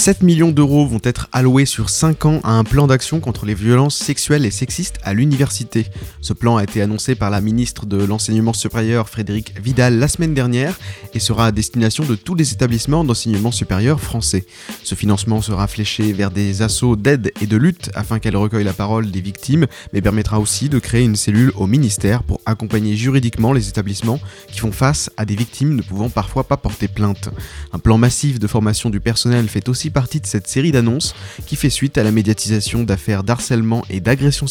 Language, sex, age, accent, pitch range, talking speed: French, male, 20-39, French, 105-130 Hz, 200 wpm